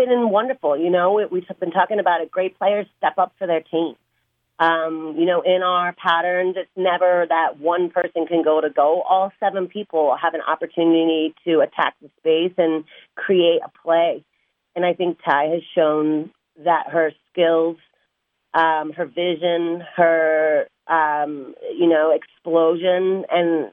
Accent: American